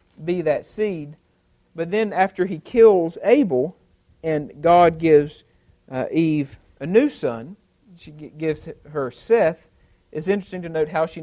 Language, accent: English, American